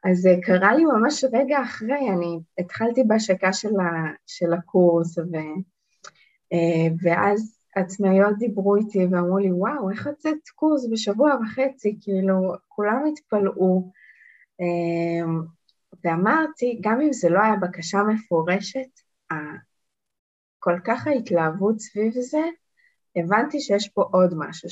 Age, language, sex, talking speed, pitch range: 20-39, Hebrew, female, 115 wpm, 180-215 Hz